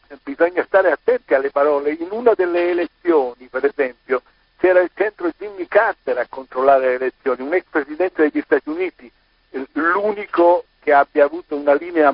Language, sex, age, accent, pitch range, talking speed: Italian, male, 60-79, native, 135-180 Hz, 160 wpm